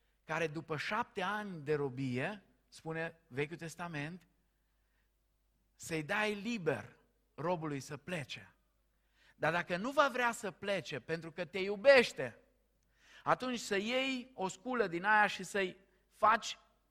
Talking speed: 130 wpm